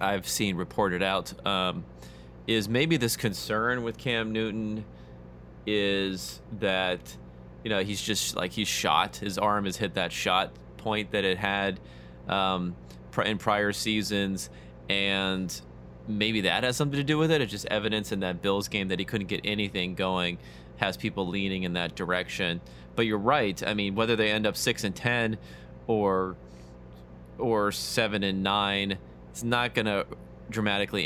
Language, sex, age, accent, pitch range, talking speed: English, male, 30-49, American, 85-105 Hz, 165 wpm